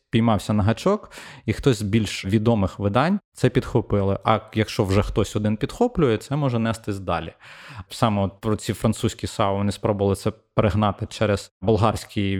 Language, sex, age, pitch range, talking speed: Ukrainian, male, 20-39, 100-115 Hz, 160 wpm